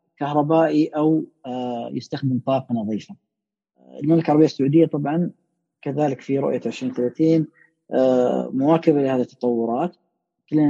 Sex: female